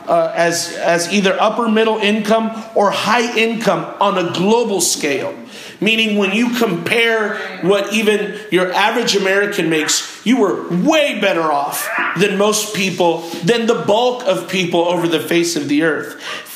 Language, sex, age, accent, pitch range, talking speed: English, male, 40-59, American, 175-225 Hz, 155 wpm